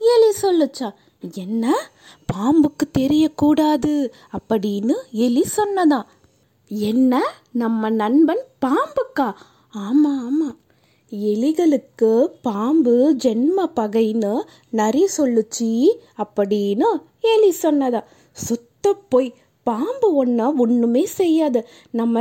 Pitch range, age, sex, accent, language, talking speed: 220-310 Hz, 20-39, female, native, Tamil, 75 wpm